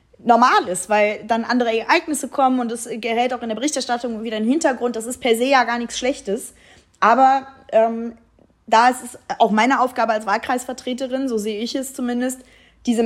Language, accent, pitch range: German, German, 210-245 Hz